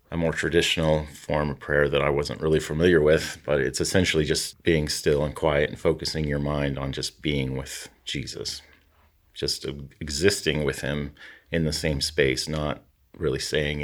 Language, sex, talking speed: English, male, 175 wpm